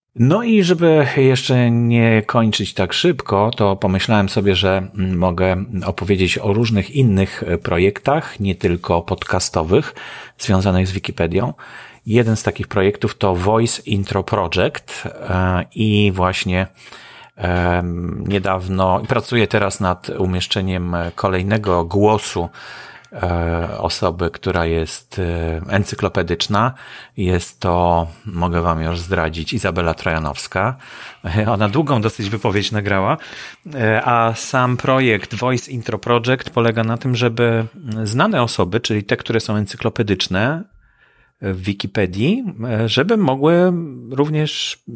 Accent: Polish